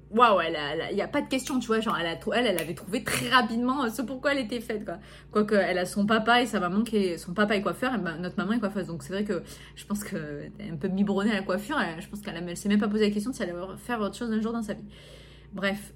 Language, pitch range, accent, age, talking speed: French, 200-245 Hz, French, 20-39, 300 wpm